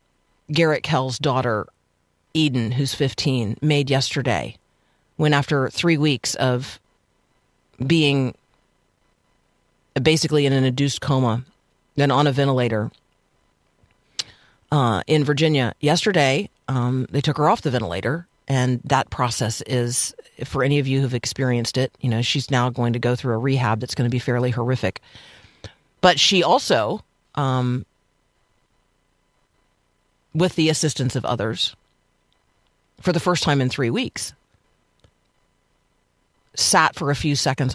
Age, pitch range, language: 40-59, 120-145 Hz, English